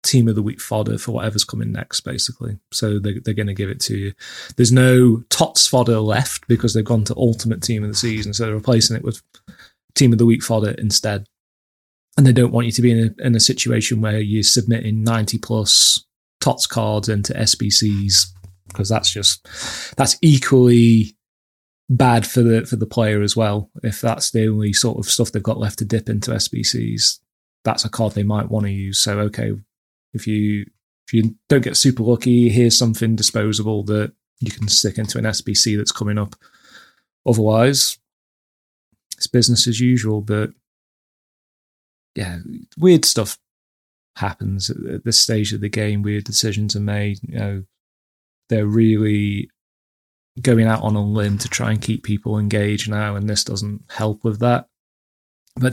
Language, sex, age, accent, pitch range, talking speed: English, male, 20-39, British, 105-120 Hz, 180 wpm